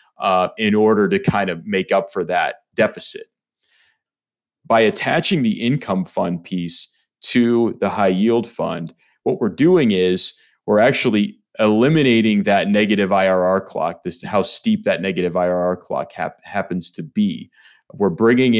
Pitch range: 90-125 Hz